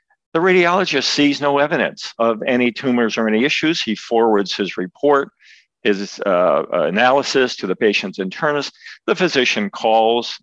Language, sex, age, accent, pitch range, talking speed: English, male, 50-69, American, 105-155 Hz, 145 wpm